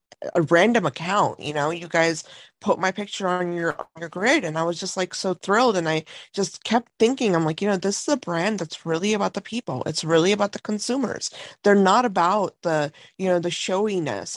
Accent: American